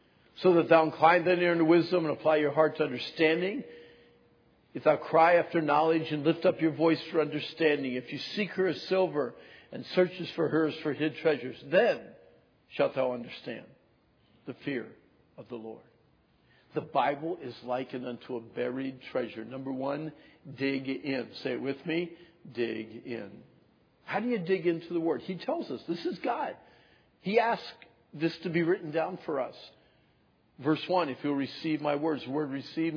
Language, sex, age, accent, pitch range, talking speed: English, male, 60-79, American, 140-170 Hz, 180 wpm